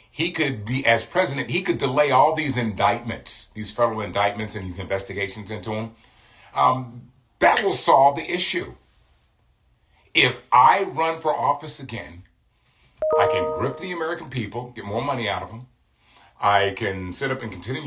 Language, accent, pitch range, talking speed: English, American, 110-145 Hz, 165 wpm